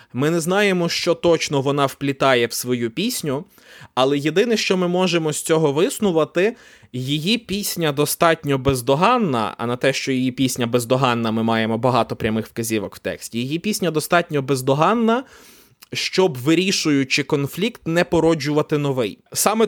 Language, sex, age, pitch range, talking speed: Ukrainian, male, 20-39, 130-175 Hz, 145 wpm